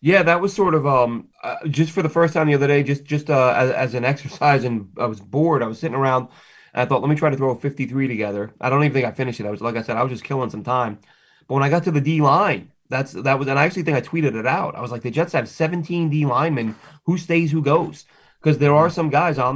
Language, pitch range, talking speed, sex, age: English, 125-150 Hz, 300 wpm, male, 30-49